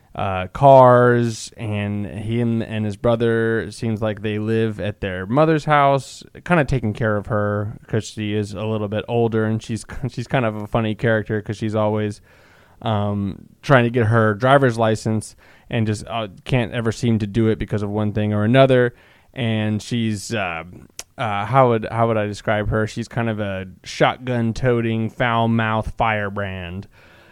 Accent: American